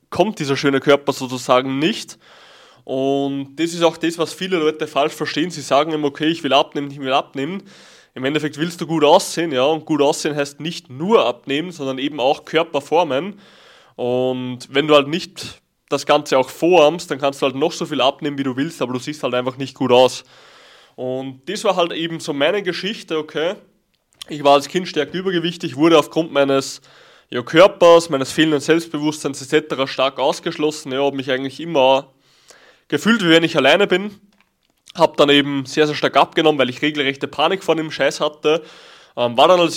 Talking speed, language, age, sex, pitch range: 190 wpm, German, 20-39, male, 135-165 Hz